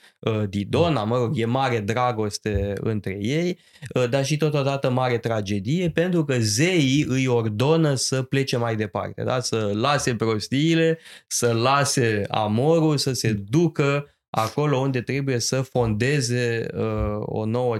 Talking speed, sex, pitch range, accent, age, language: 125 wpm, male, 115-160 Hz, native, 20-39, Romanian